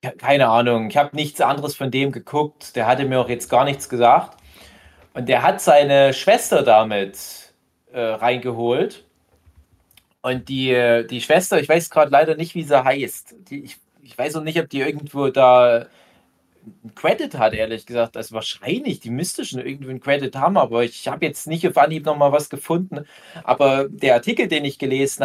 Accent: German